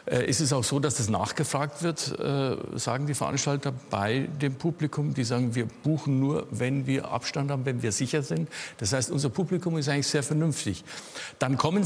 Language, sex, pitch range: German, male, 115-145 Hz